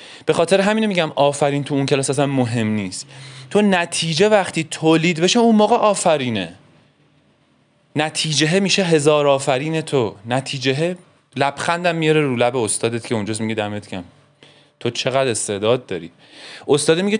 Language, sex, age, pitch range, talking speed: Persian, male, 30-49, 130-180 Hz, 145 wpm